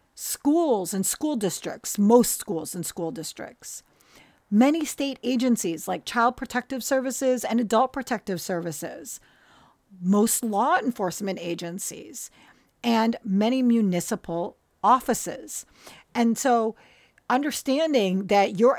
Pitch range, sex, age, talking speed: 190-240 Hz, female, 40-59, 105 wpm